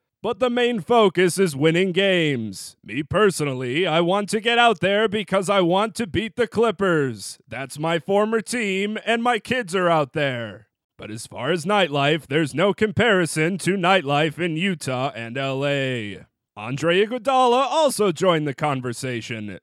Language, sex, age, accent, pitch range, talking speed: English, male, 30-49, American, 150-225 Hz, 160 wpm